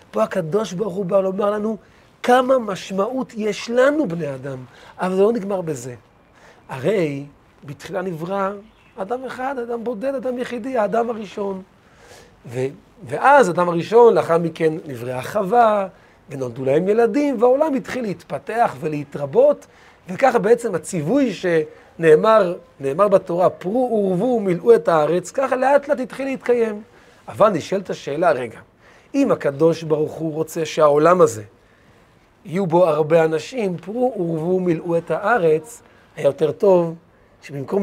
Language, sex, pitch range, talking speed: Hebrew, male, 155-230 Hz, 135 wpm